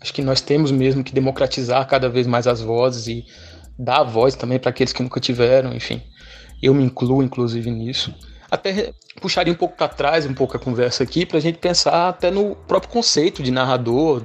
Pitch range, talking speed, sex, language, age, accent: 125-165 Hz, 200 wpm, male, Portuguese, 20-39, Brazilian